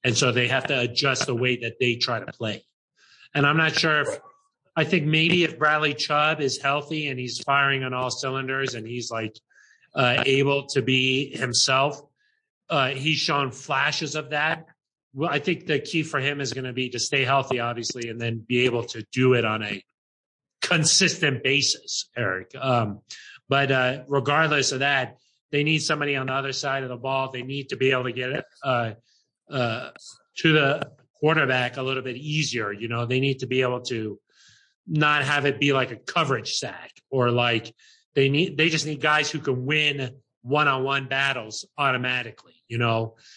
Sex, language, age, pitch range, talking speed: male, English, 30-49, 125-150 Hz, 190 wpm